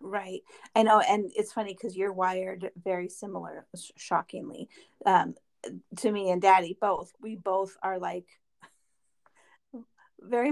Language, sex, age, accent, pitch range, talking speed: English, female, 30-49, American, 190-235 Hz, 130 wpm